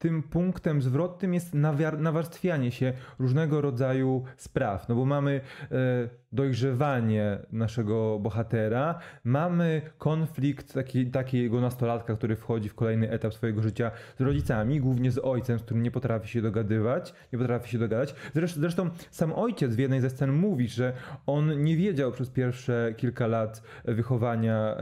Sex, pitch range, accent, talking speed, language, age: male, 115-155 Hz, native, 150 wpm, Polish, 20-39